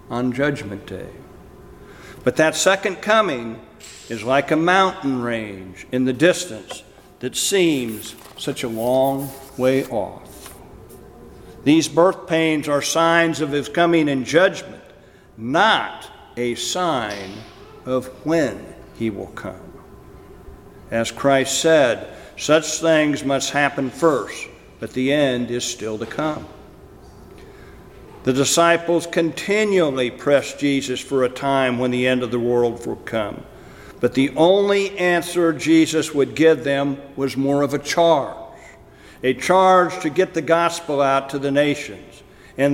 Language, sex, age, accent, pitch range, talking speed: English, male, 60-79, American, 130-170 Hz, 135 wpm